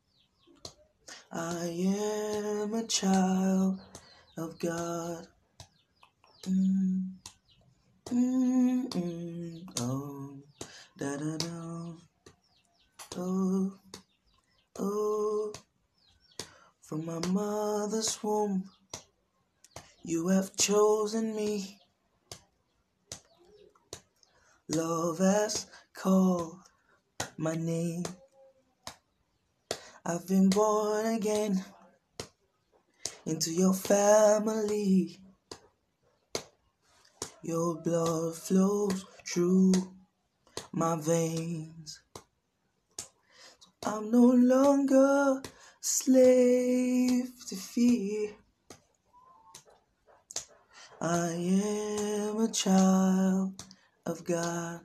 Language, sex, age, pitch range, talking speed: English, male, 20-39, 170-220 Hz, 55 wpm